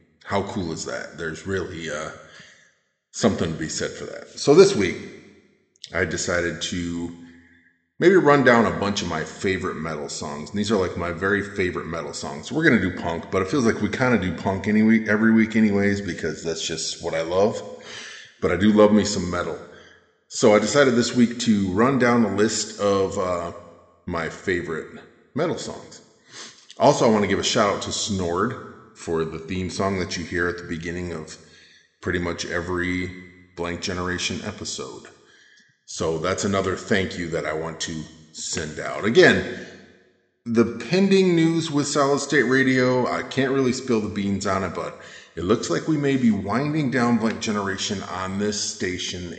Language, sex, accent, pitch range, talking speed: English, male, American, 85-115 Hz, 185 wpm